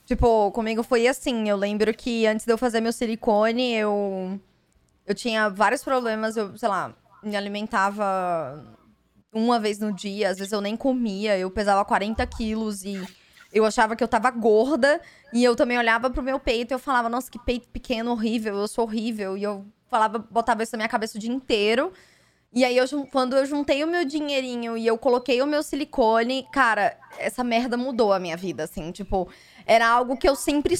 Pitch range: 215-270 Hz